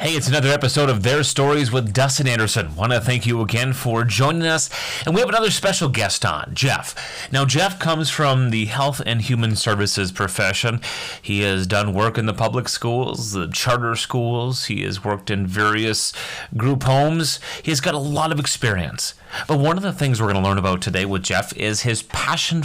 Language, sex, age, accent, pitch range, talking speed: English, male, 30-49, American, 110-140 Hz, 200 wpm